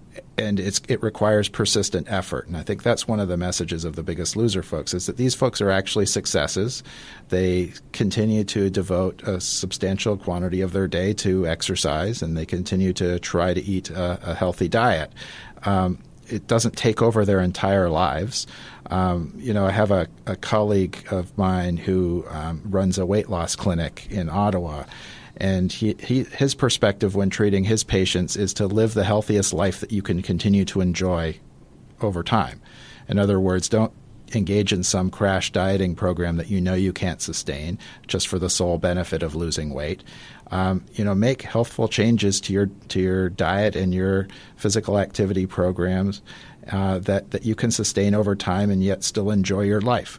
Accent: American